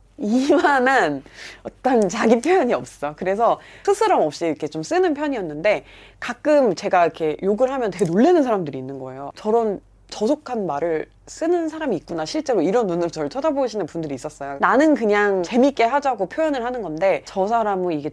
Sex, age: female, 30-49